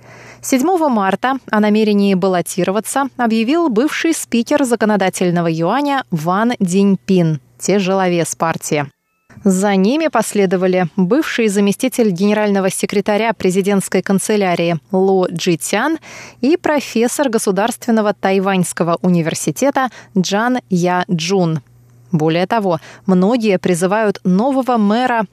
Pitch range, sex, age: 180-240 Hz, female, 20-39